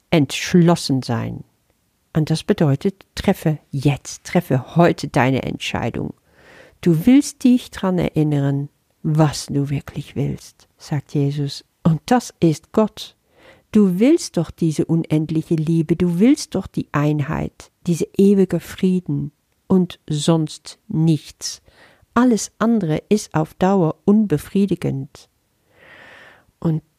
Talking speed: 110 wpm